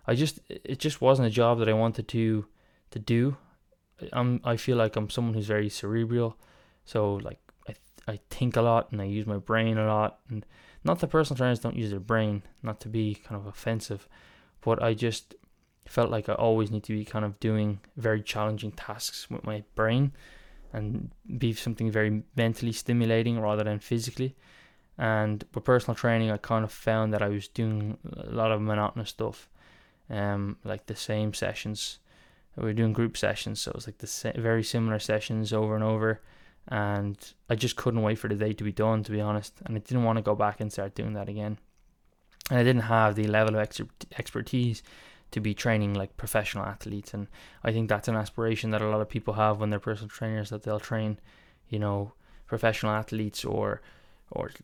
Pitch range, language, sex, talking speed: 105-115 Hz, English, male, 205 wpm